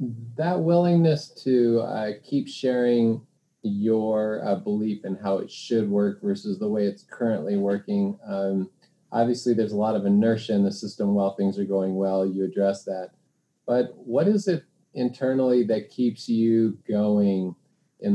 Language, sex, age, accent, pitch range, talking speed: English, male, 30-49, American, 100-120 Hz, 160 wpm